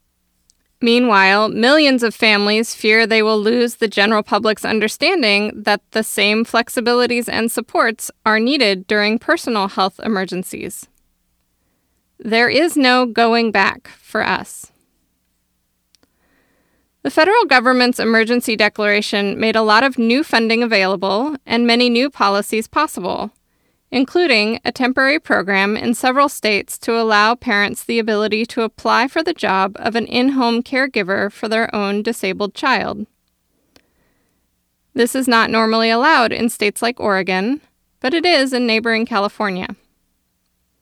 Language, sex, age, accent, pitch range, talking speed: English, female, 20-39, American, 200-240 Hz, 130 wpm